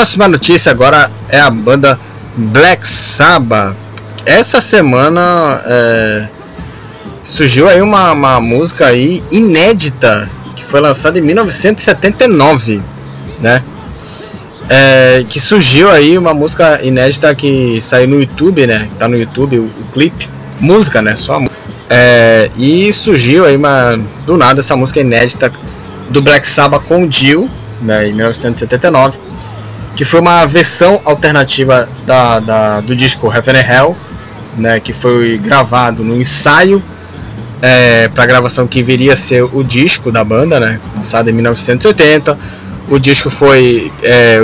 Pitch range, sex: 115-145 Hz, male